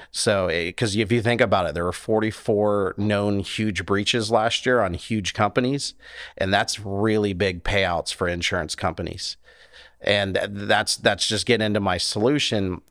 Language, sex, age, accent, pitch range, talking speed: English, male, 40-59, American, 100-115 Hz, 160 wpm